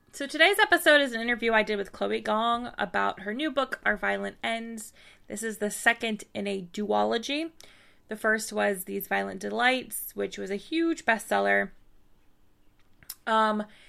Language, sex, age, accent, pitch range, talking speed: English, female, 20-39, American, 200-255 Hz, 160 wpm